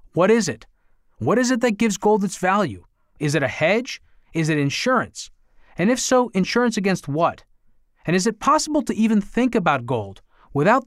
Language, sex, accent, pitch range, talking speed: English, male, American, 155-200 Hz, 190 wpm